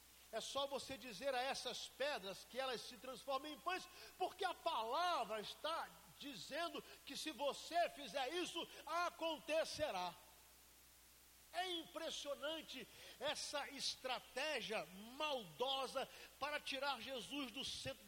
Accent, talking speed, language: Brazilian, 115 wpm, Portuguese